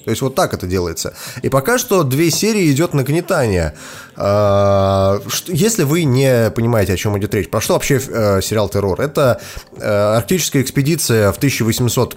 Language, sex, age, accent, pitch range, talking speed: Russian, male, 20-39, native, 100-130 Hz, 175 wpm